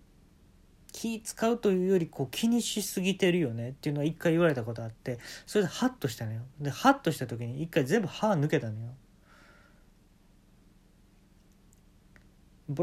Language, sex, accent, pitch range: Japanese, male, native, 120-180 Hz